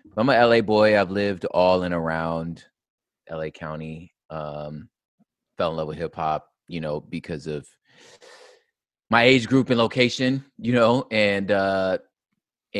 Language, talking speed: English, 140 wpm